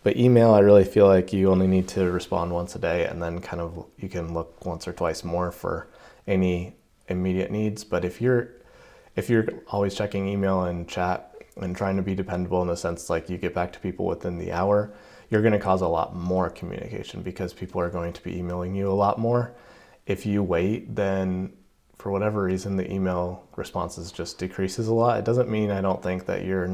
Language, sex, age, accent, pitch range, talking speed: English, male, 20-39, American, 90-100 Hz, 215 wpm